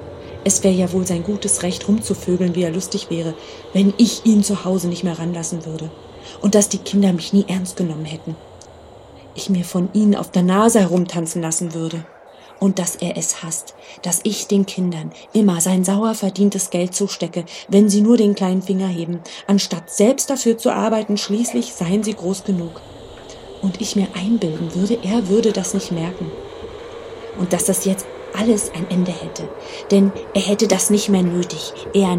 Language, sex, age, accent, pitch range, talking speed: German, female, 30-49, German, 180-220 Hz, 185 wpm